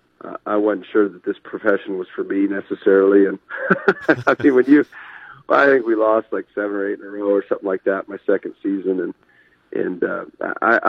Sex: male